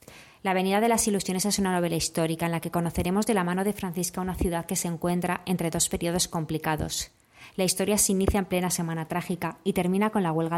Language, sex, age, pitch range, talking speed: Spanish, female, 20-39, 165-190 Hz, 225 wpm